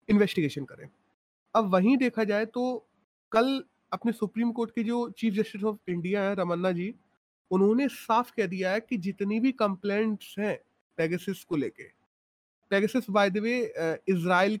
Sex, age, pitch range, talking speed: male, 30-49, 185-225 Hz, 150 wpm